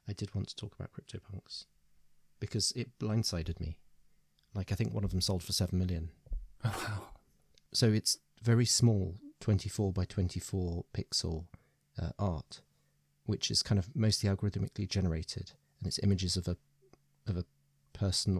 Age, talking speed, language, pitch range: 30-49, 155 wpm, English, 95-120 Hz